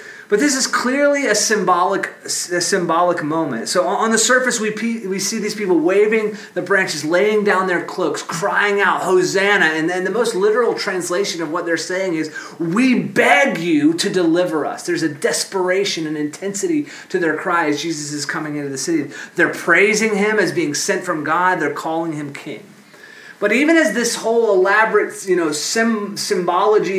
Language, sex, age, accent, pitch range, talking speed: English, male, 30-49, American, 165-225 Hz, 180 wpm